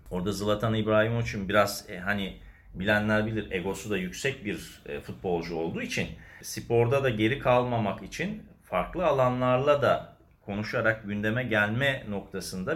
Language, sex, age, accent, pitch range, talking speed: Turkish, male, 50-69, native, 100-140 Hz, 135 wpm